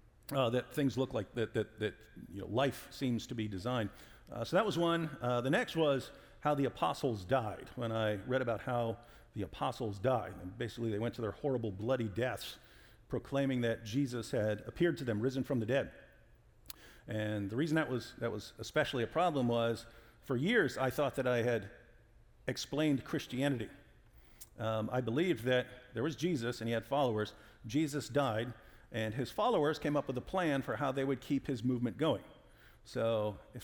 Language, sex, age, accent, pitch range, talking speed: English, male, 50-69, American, 115-140 Hz, 190 wpm